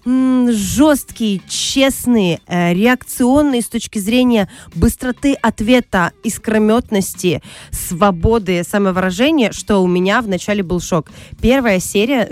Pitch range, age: 185-235 Hz, 20-39